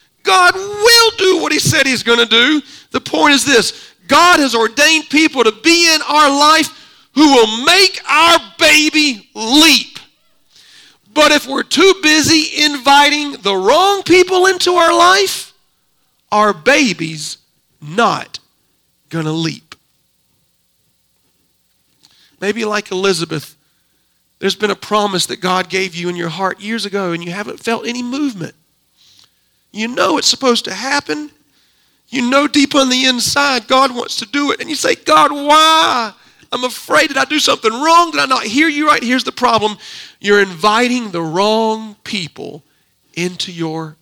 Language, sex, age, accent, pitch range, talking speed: English, male, 40-59, American, 175-285 Hz, 155 wpm